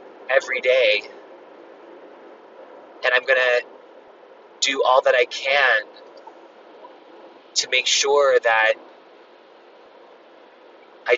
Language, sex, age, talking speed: English, male, 30-49, 85 wpm